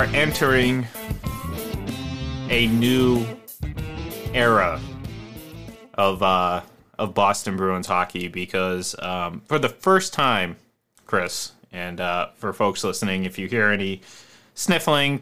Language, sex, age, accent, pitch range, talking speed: English, male, 30-49, American, 95-120 Hz, 105 wpm